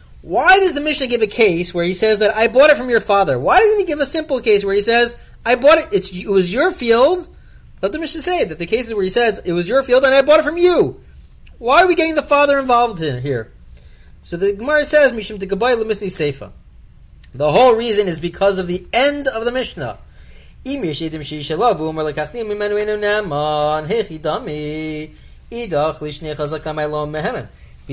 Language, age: English, 30-49